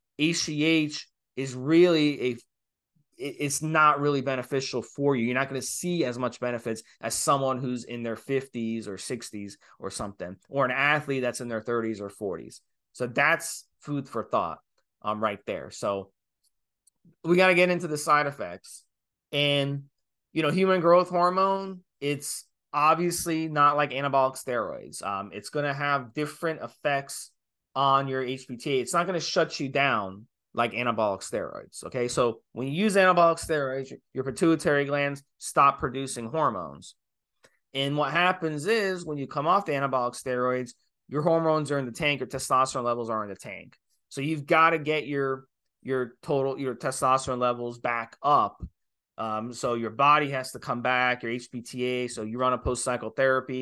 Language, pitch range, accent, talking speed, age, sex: English, 120-150 Hz, American, 170 wpm, 20-39, male